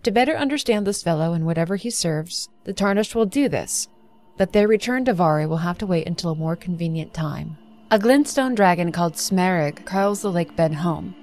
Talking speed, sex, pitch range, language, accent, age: 205 wpm, female, 175-235 Hz, English, American, 30-49